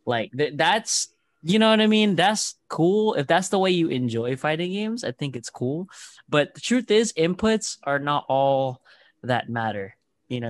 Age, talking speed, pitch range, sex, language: 20-39, 195 wpm, 115-170 Hz, male, English